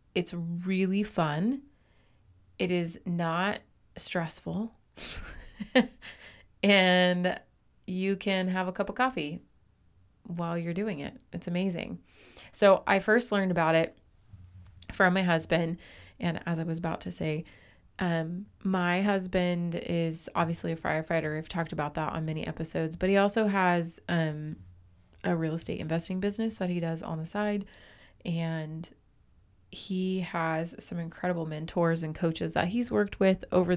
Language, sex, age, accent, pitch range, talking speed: English, female, 30-49, American, 155-185 Hz, 140 wpm